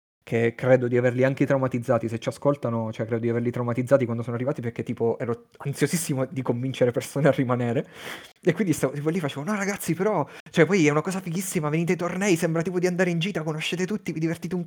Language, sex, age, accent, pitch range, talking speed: Italian, male, 30-49, native, 115-155 Hz, 230 wpm